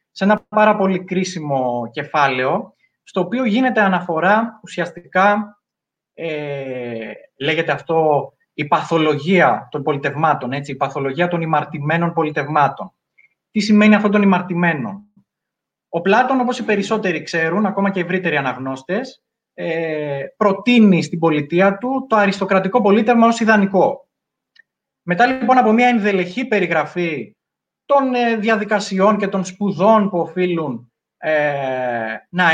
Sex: male